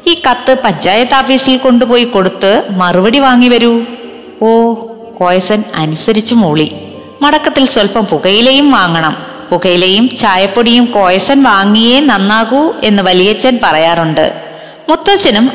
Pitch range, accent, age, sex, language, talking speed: 180-245 Hz, native, 30-49, female, Malayalam, 95 wpm